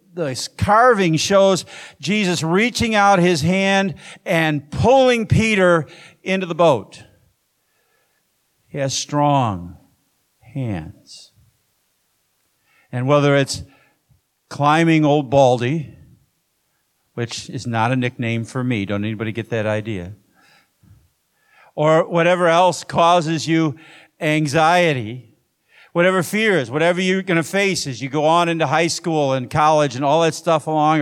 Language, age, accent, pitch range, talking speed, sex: English, 50-69, American, 130-170 Hz, 120 wpm, male